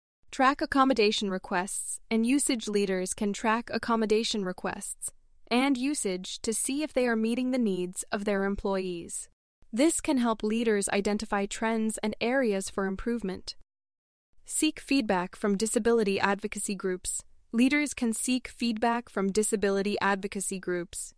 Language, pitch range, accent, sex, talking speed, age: English, 200-250 Hz, American, female, 135 wpm, 20-39